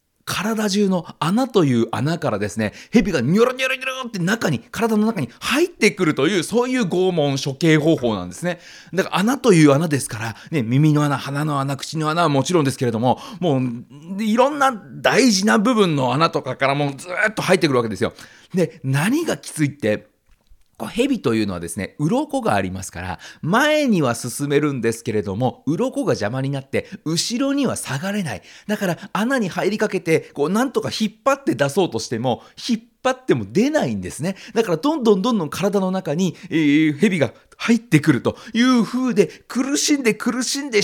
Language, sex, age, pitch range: Japanese, male, 40-59, 140-230 Hz